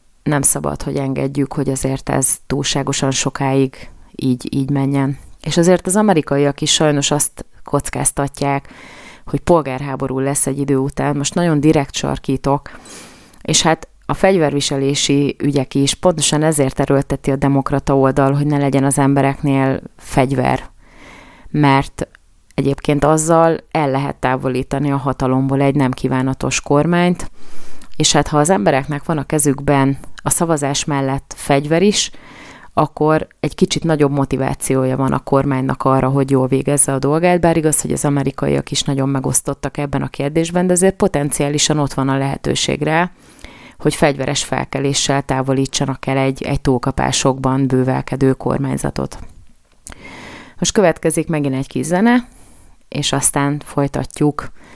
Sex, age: female, 30-49